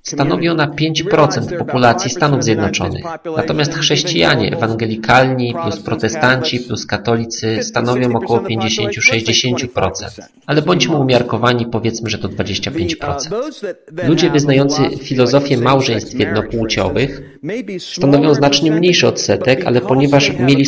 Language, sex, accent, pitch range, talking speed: Polish, male, native, 115-145 Hz, 100 wpm